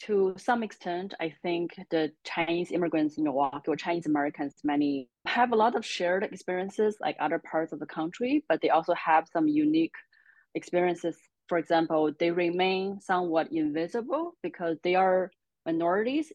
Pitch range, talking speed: 150-190 Hz, 160 wpm